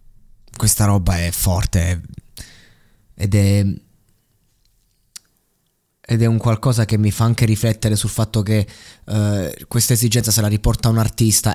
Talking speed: 135 wpm